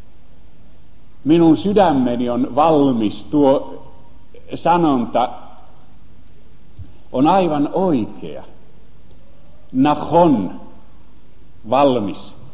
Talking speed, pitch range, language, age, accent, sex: 55 wpm, 115-175 Hz, Finnish, 60-79, native, male